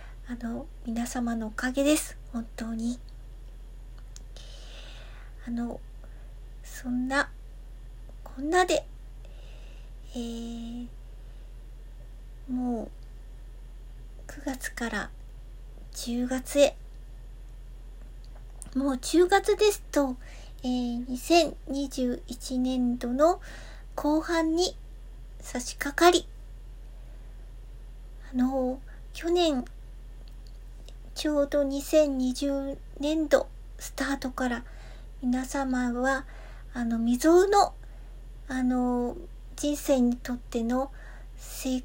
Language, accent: Japanese, native